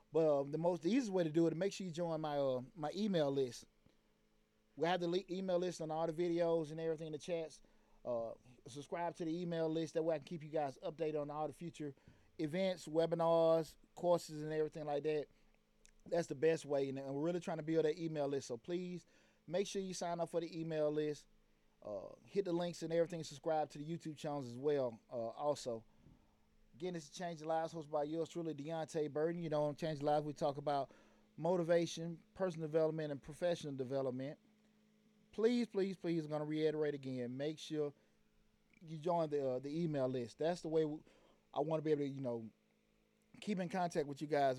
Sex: male